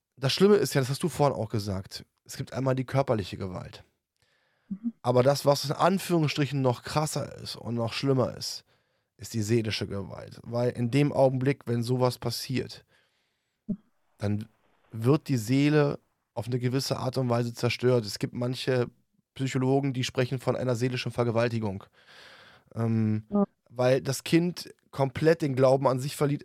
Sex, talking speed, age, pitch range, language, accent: male, 160 wpm, 10-29, 120-140 Hz, German, German